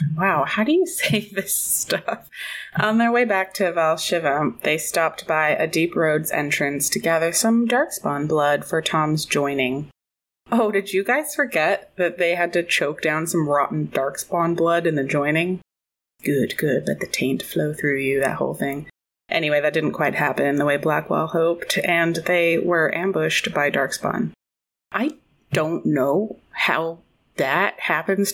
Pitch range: 150-190 Hz